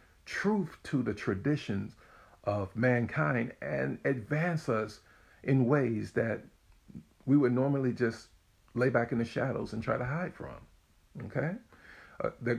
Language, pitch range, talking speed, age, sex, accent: English, 115-145 Hz, 140 wpm, 50-69, male, American